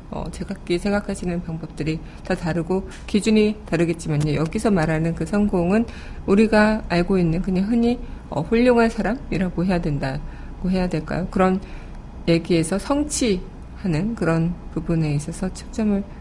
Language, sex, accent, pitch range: Korean, female, native, 165-205 Hz